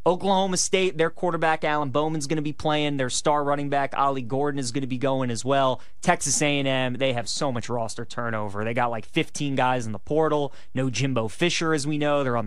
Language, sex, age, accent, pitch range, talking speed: English, male, 20-39, American, 135-175 Hz, 225 wpm